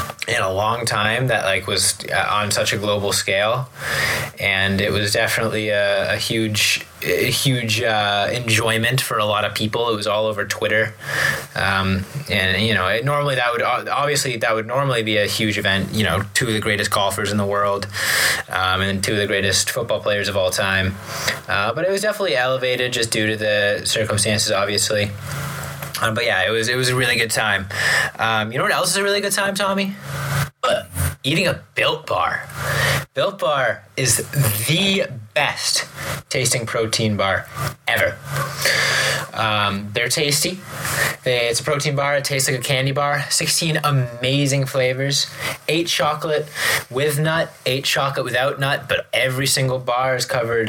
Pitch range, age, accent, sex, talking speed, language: 105-140 Hz, 20-39, American, male, 175 wpm, English